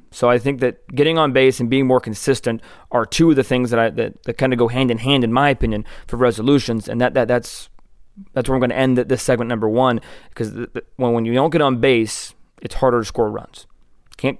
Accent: American